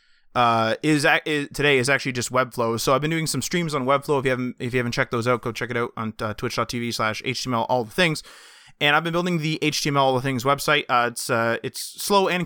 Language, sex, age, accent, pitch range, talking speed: English, male, 20-39, American, 120-150 Hz, 260 wpm